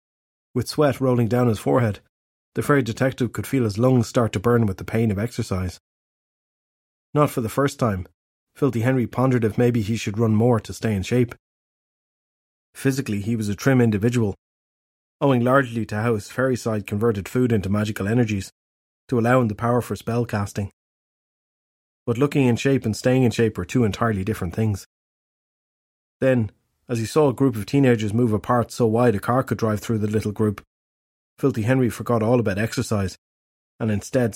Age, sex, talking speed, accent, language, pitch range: 30-49, male, 185 wpm, Irish, English, 105-125 Hz